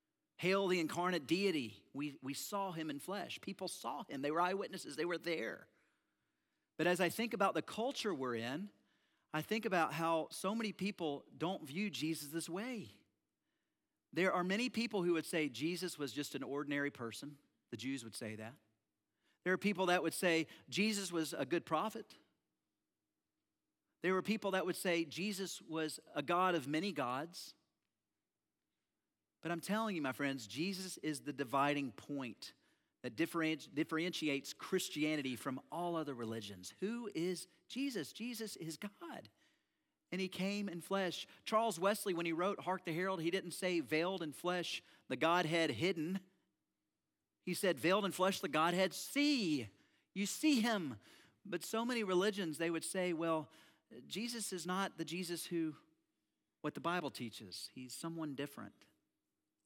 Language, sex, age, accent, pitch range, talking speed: English, male, 40-59, American, 155-190 Hz, 160 wpm